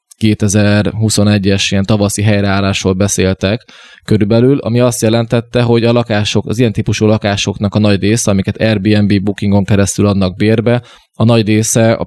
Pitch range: 100-115 Hz